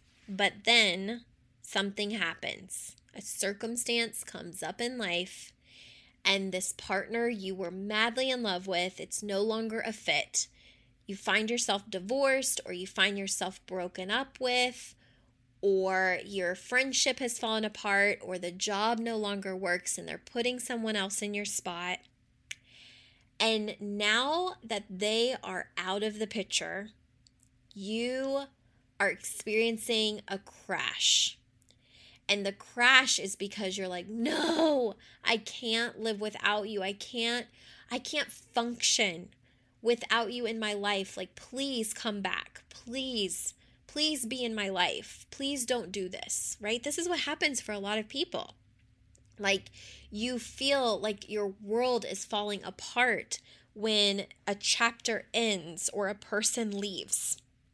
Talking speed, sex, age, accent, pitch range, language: 140 wpm, female, 20-39, American, 190-235 Hz, English